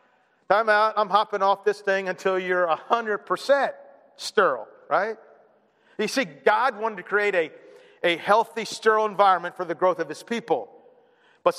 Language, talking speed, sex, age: English, 155 wpm, male, 50-69